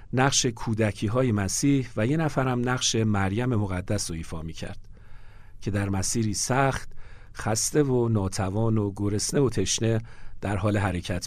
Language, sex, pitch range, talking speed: Persian, male, 100-125 Hz, 145 wpm